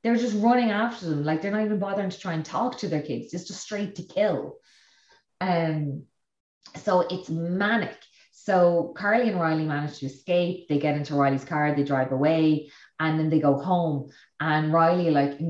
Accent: Irish